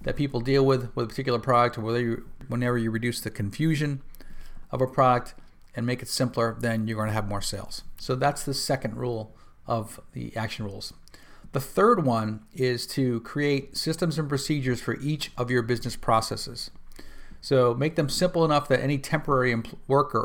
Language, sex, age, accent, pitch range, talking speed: English, male, 40-59, American, 110-130 Hz, 185 wpm